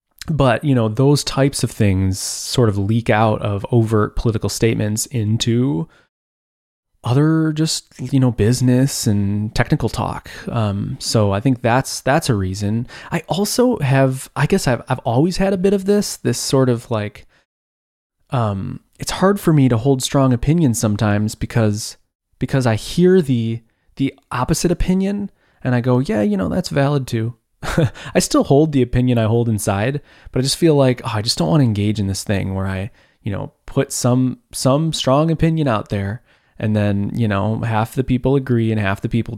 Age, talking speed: 20-39, 185 wpm